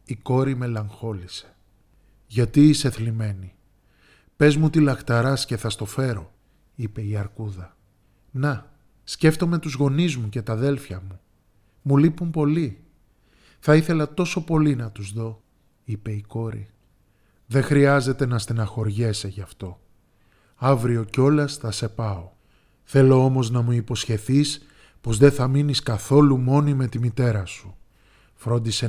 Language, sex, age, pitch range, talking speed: Greek, male, 20-39, 105-140 Hz, 135 wpm